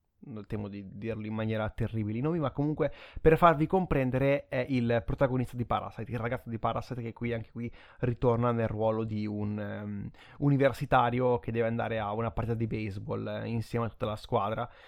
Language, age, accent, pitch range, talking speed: Italian, 20-39, native, 110-140 Hz, 180 wpm